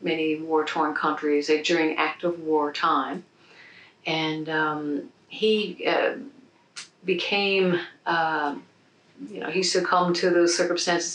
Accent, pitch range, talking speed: American, 155-185 Hz, 115 wpm